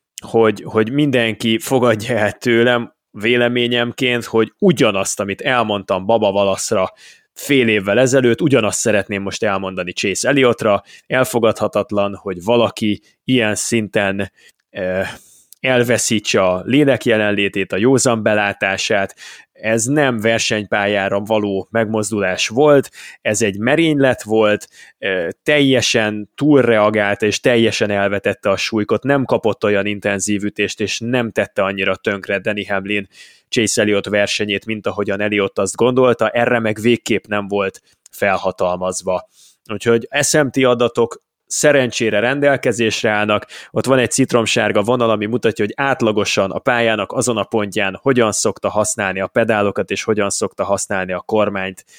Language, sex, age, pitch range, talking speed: Hungarian, male, 20-39, 100-120 Hz, 125 wpm